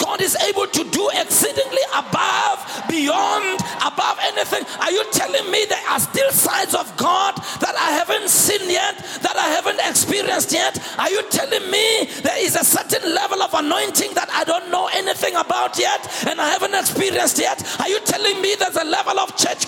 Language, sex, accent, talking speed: English, male, South African, 190 wpm